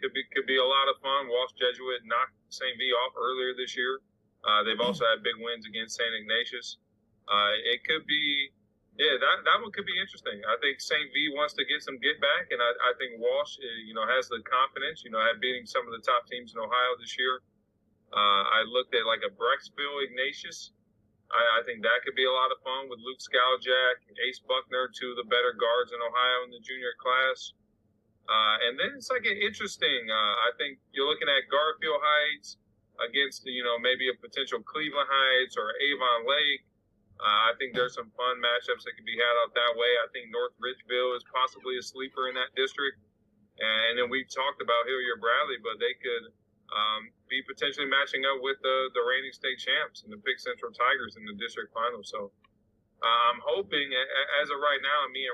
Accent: American